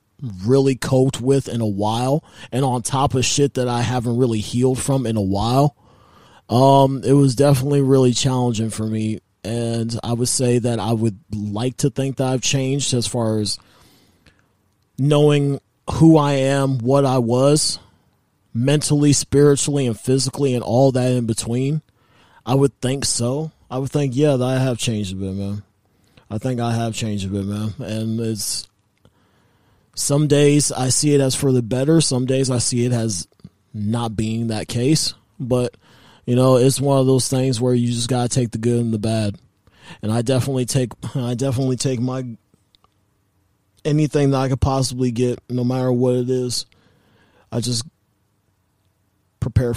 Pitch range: 115-135 Hz